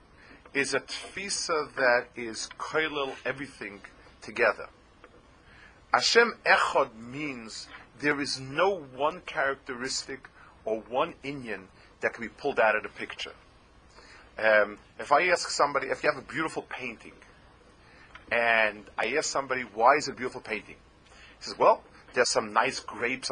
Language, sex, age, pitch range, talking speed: English, male, 40-59, 120-170 Hz, 140 wpm